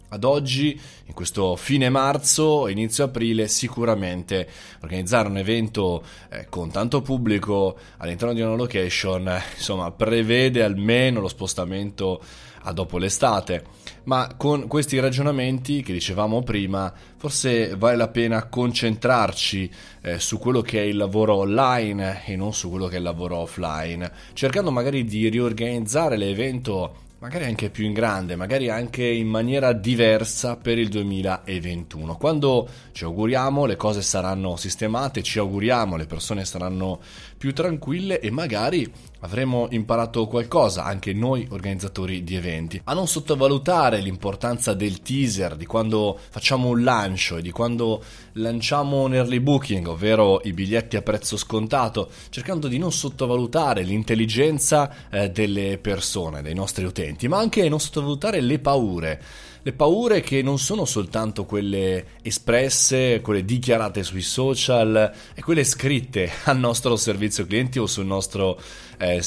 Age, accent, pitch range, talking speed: 20-39, native, 95-130 Hz, 140 wpm